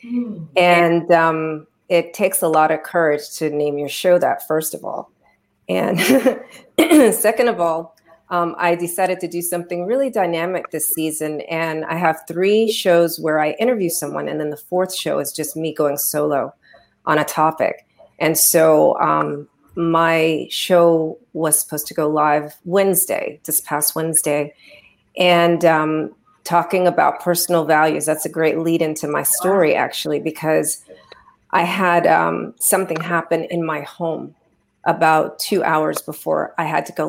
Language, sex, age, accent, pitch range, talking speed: English, female, 40-59, American, 155-185 Hz, 155 wpm